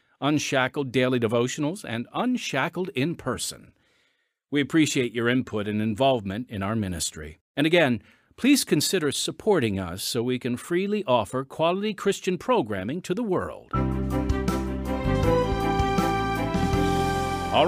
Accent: American